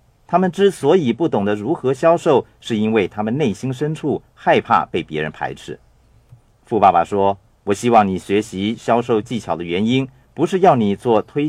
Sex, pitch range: male, 105-150 Hz